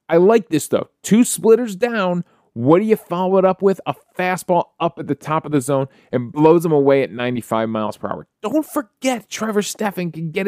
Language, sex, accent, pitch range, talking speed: English, male, American, 140-185 Hz, 220 wpm